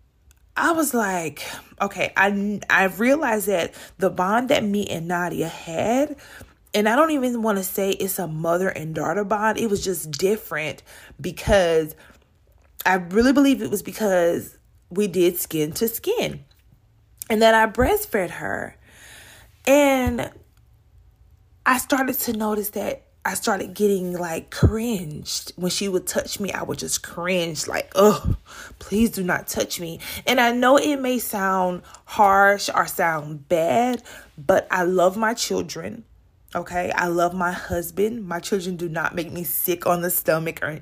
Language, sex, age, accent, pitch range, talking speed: English, female, 20-39, American, 170-220 Hz, 155 wpm